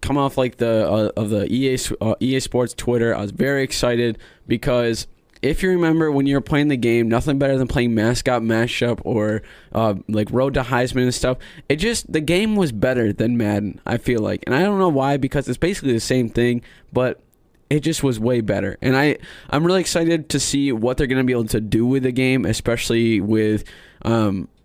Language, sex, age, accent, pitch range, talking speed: English, male, 20-39, American, 110-135 Hz, 210 wpm